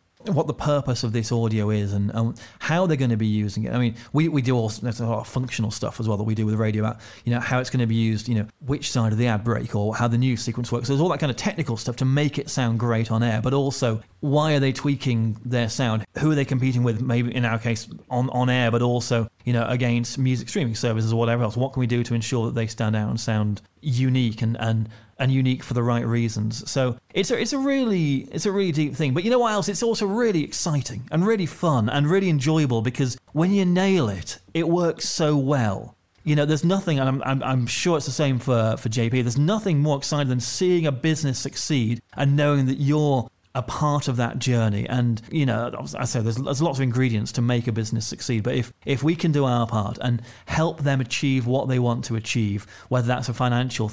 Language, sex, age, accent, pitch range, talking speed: English, male, 30-49, British, 115-145 Hz, 255 wpm